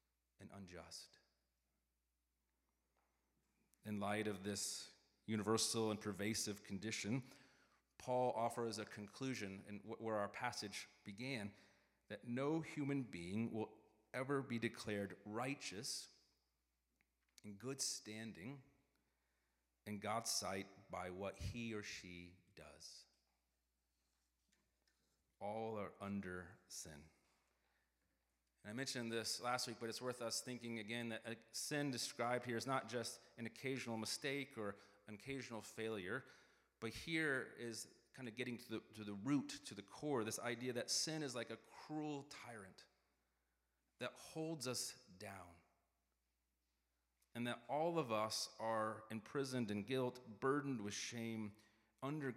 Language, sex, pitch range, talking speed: English, male, 90-120 Hz, 125 wpm